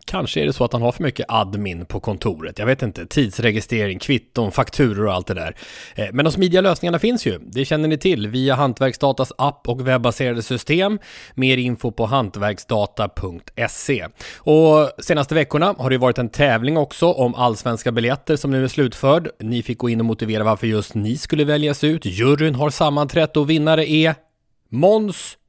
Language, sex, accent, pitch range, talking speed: English, male, Swedish, 110-150 Hz, 180 wpm